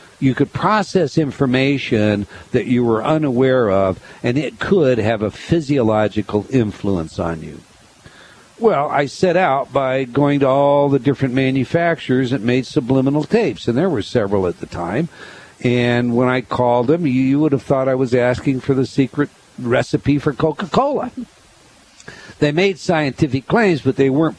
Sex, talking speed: male, 160 wpm